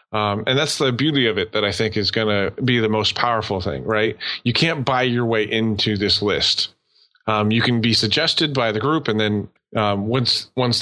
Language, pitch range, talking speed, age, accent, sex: English, 105-130 Hz, 220 wpm, 30-49, American, male